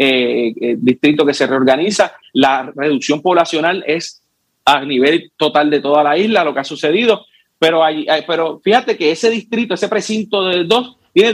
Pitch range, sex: 140-200 Hz, male